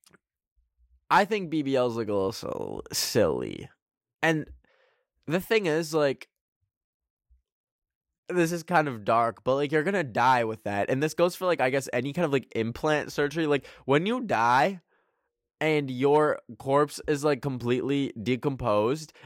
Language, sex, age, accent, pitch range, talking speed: English, male, 10-29, American, 105-155 Hz, 155 wpm